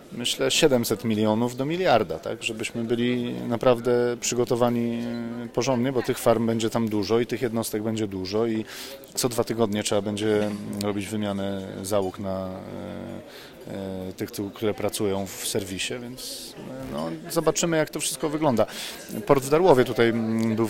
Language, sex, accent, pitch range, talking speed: Polish, male, native, 105-120 Hz, 150 wpm